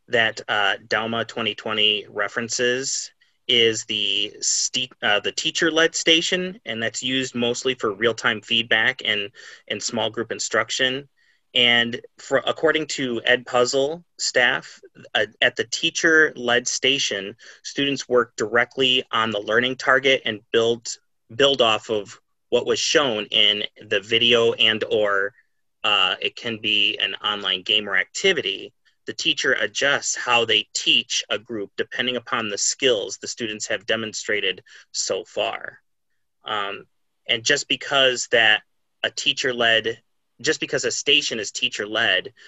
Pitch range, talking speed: 110-155 Hz, 135 wpm